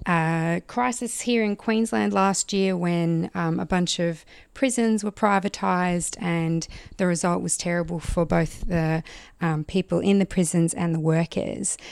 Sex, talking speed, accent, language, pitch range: female, 155 wpm, Australian, English, 165-185 Hz